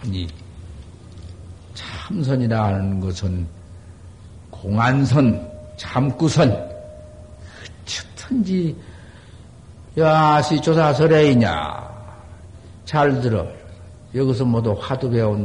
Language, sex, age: Korean, male, 50-69